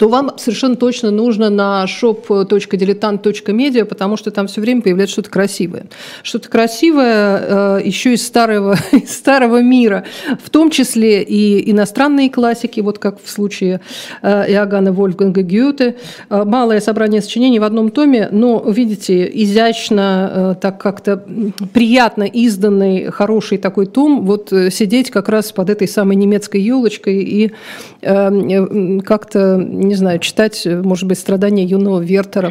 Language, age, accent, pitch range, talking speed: Russian, 50-69, native, 195-230 Hz, 145 wpm